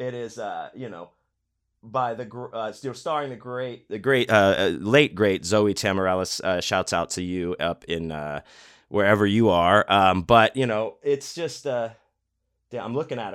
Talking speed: 190 wpm